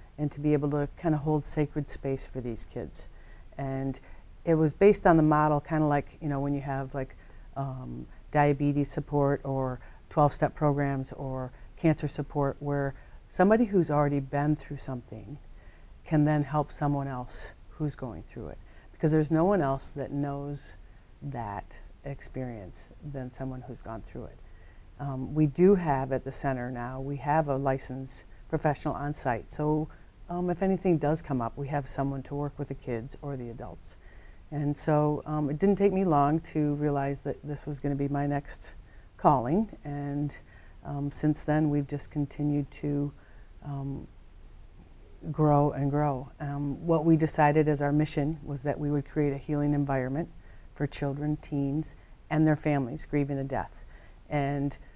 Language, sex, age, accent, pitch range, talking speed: English, female, 50-69, American, 130-150 Hz, 170 wpm